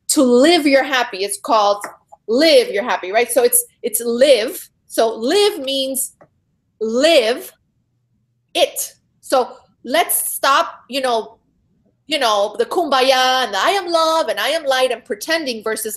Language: English